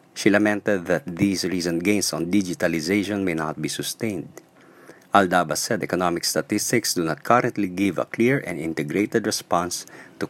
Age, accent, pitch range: 50-69, Filipino, 80-105 Hz